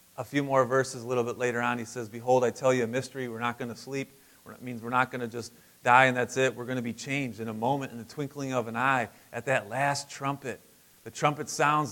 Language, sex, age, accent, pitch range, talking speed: English, male, 30-49, American, 135-205 Hz, 270 wpm